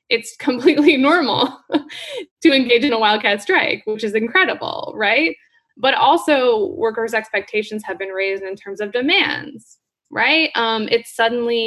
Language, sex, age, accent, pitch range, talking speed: English, female, 20-39, American, 210-310 Hz, 145 wpm